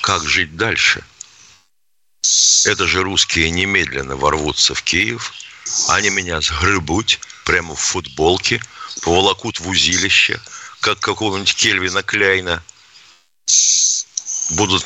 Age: 60-79